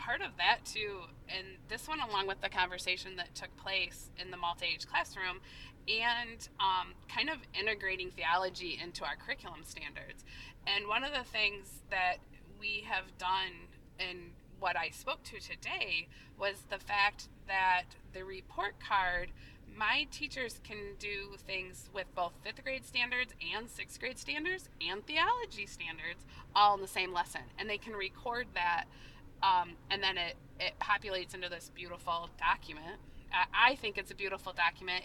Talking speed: 160 wpm